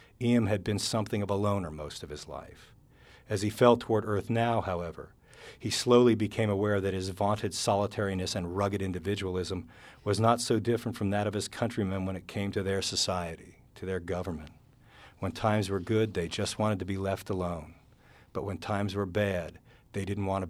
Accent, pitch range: American, 95-110 Hz